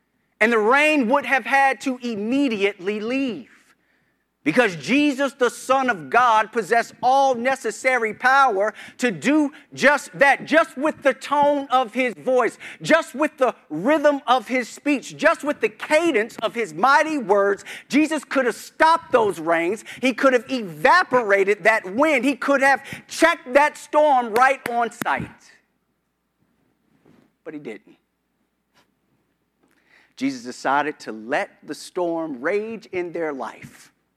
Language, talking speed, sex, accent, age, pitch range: English, 140 wpm, male, American, 40-59, 160-270 Hz